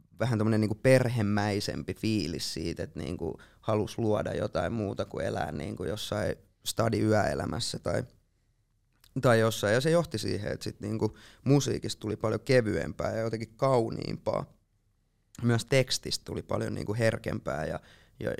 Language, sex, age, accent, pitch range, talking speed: Finnish, male, 20-39, native, 105-120 Hz, 135 wpm